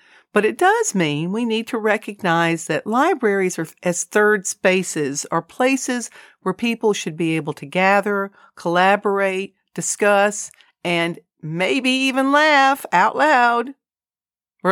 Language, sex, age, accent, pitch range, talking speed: English, female, 50-69, American, 165-215 Hz, 130 wpm